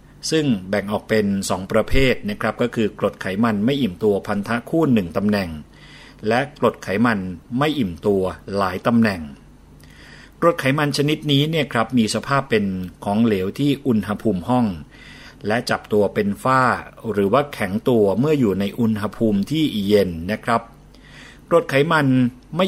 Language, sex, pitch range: Thai, male, 100-135 Hz